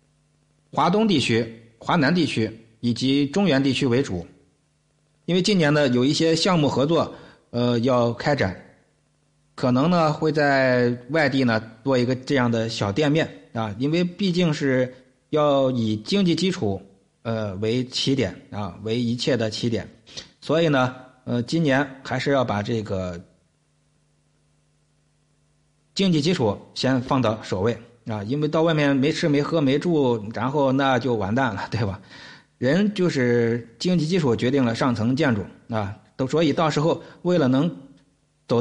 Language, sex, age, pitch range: Chinese, male, 50-69, 115-150 Hz